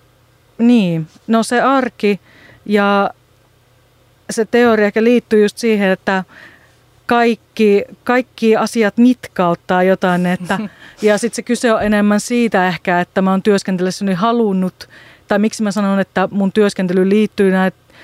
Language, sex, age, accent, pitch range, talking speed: Finnish, female, 40-59, native, 180-210 Hz, 135 wpm